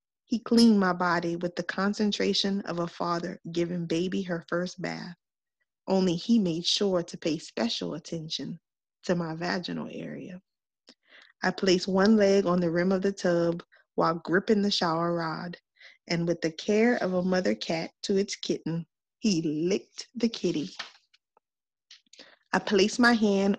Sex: female